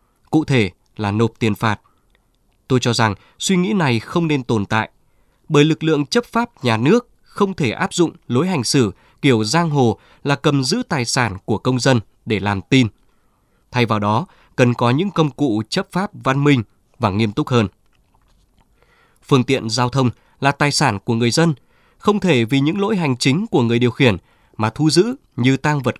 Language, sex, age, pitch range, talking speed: Vietnamese, male, 20-39, 115-160 Hz, 200 wpm